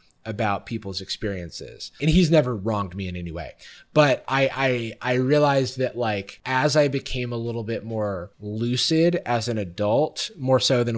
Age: 20-39